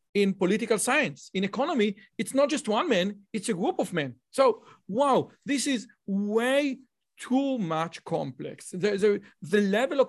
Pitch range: 185-245 Hz